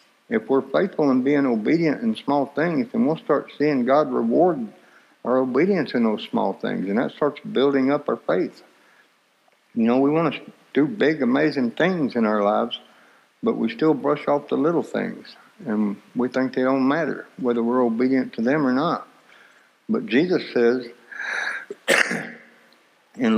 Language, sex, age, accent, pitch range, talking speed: English, male, 60-79, American, 120-145 Hz, 165 wpm